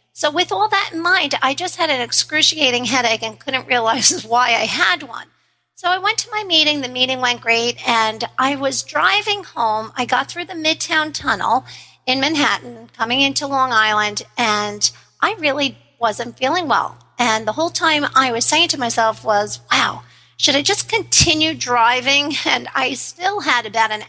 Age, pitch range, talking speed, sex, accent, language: 50-69, 230-300 Hz, 185 wpm, female, American, English